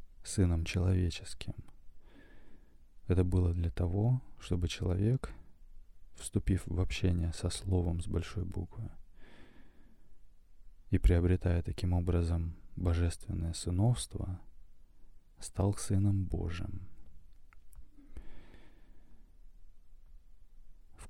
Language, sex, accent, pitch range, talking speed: Russian, male, native, 80-95 Hz, 75 wpm